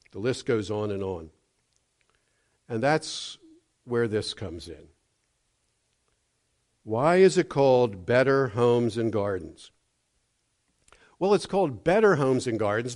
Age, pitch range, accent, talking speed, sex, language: 50-69, 120-175 Hz, American, 125 wpm, male, English